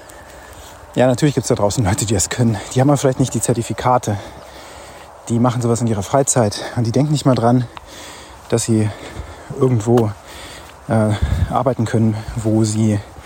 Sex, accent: male, German